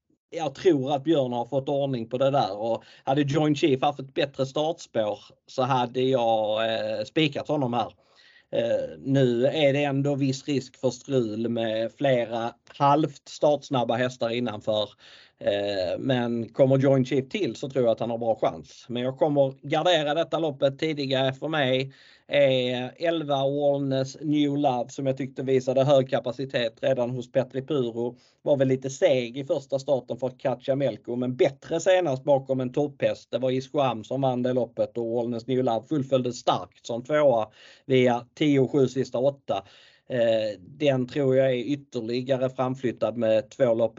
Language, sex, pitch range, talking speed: Swedish, male, 125-145 Hz, 170 wpm